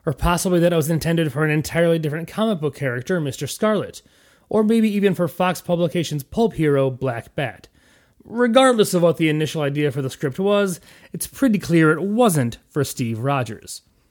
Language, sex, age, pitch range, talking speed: English, male, 30-49, 130-185 Hz, 185 wpm